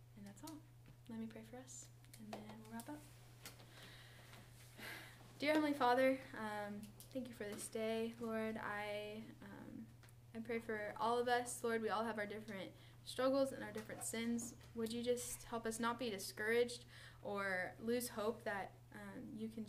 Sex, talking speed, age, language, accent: female, 165 wpm, 10-29, English, American